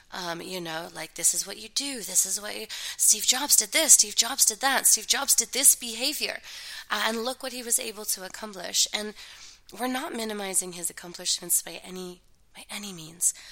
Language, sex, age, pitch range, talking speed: English, female, 20-39, 180-225 Hz, 205 wpm